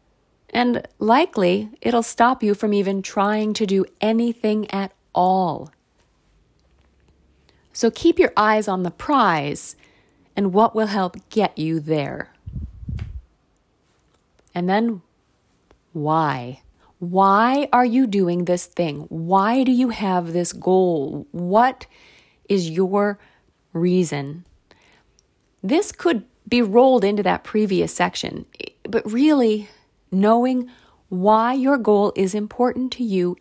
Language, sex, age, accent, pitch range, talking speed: English, female, 30-49, American, 175-220 Hz, 115 wpm